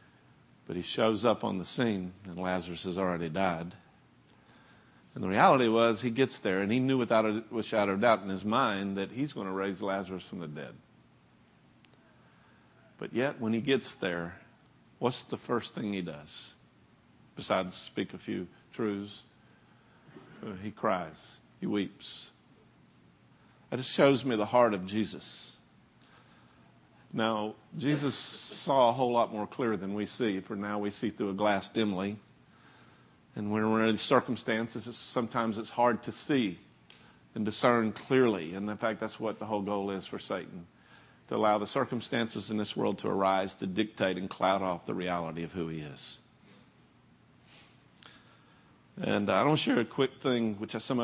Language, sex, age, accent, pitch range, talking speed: English, male, 50-69, American, 95-115 Hz, 165 wpm